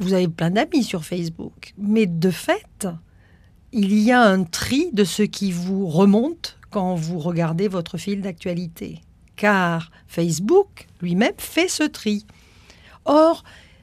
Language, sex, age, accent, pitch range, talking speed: French, female, 50-69, French, 175-255 Hz, 140 wpm